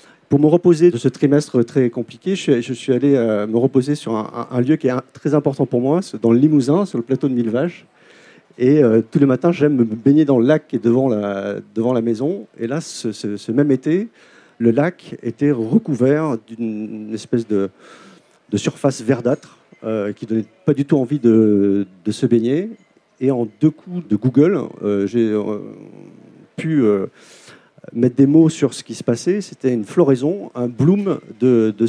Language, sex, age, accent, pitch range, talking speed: French, male, 50-69, French, 115-150 Hz, 200 wpm